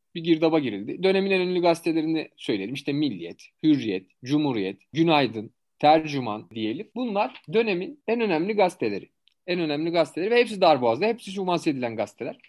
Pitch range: 130-185 Hz